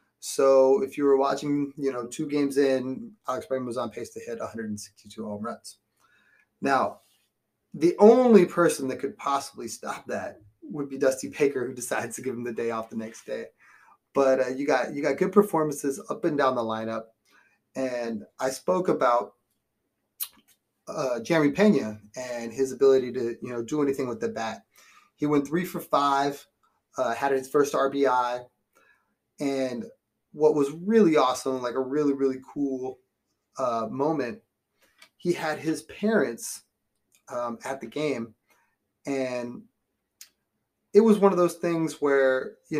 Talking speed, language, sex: 160 wpm, English, male